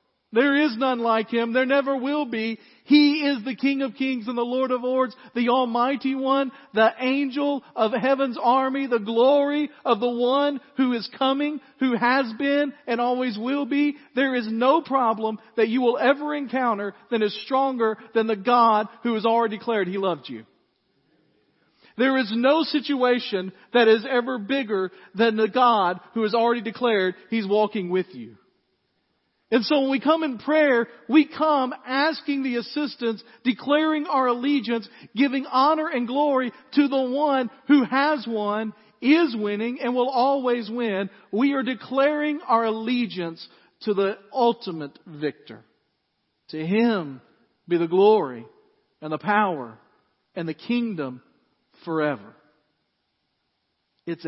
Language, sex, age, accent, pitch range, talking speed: English, male, 40-59, American, 215-270 Hz, 150 wpm